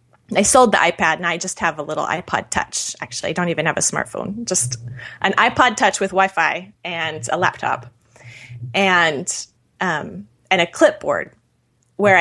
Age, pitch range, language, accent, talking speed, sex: 20-39, 155-195 Hz, English, American, 165 wpm, female